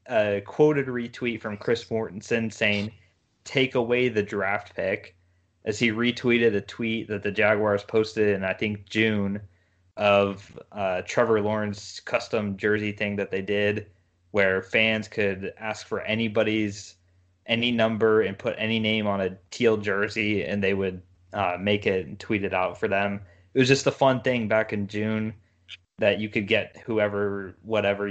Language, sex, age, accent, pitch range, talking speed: English, male, 20-39, American, 95-110 Hz, 165 wpm